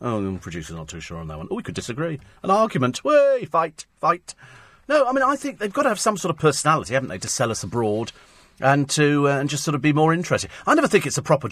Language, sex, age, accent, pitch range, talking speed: English, male, 40-59, British, 100-155 Hz, 275 wpm